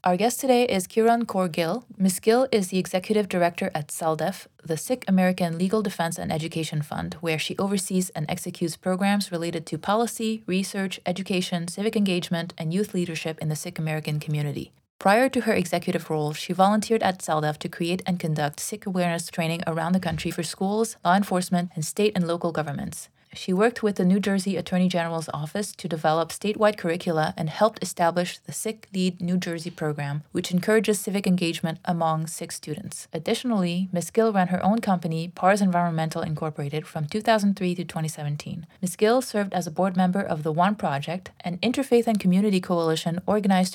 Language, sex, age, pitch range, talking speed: English, female, 20-39, 165-200 Hz, 180 wpm